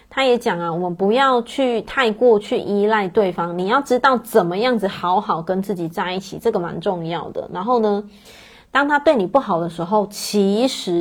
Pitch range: 190-240 Hz